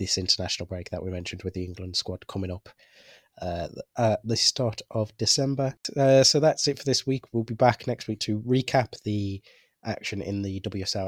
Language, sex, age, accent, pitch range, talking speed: English, male, 20-39, British, 100-115 Hz, 200 wpm